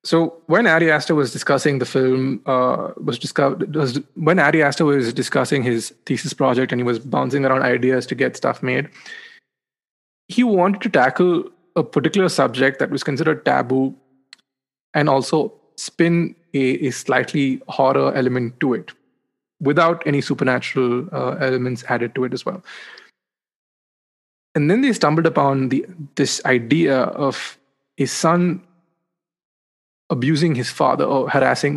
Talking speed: 145 wpm